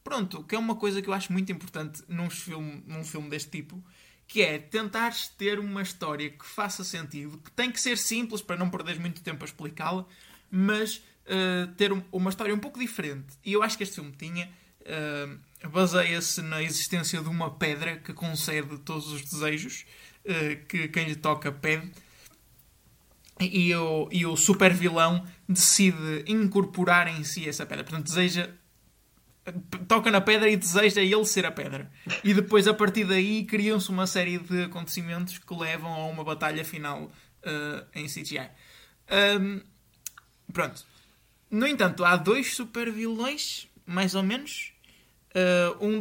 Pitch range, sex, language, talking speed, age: 160-200 Hz, male, Portuguese, 155 wpm, 20-39